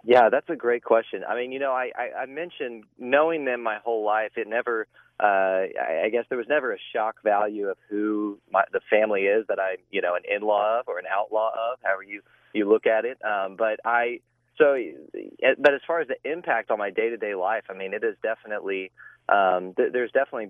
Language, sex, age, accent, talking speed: English, male, 30-49, American, 230 wpm